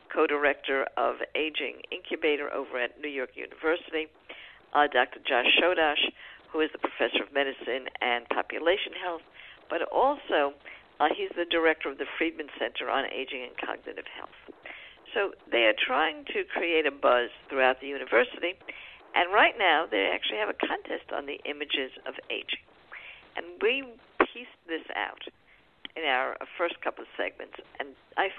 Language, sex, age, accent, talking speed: English, female, 60-79, American, 155 wpm